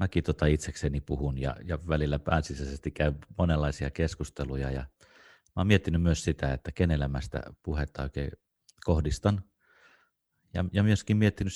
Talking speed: 140 wpm